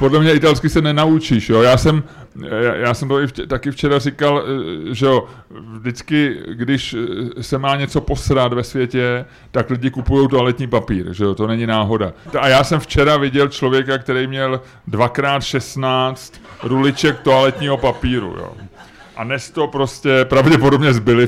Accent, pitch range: native, 120-140 Hz